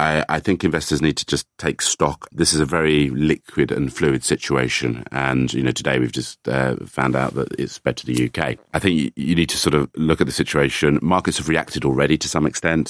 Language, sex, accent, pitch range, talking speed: English, male, British, 65-75 Hz, 230 wpm